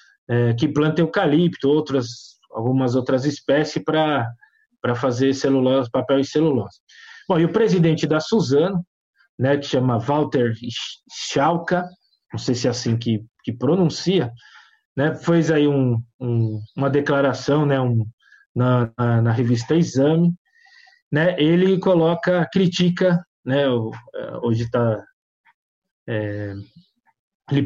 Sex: male